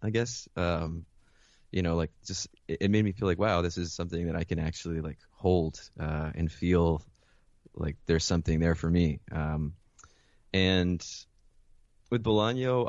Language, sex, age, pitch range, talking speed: English, male, 20-39, 80-95 Hz, 165 wpm